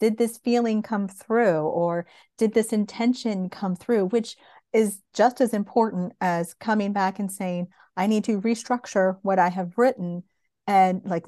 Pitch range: 190-240 Hz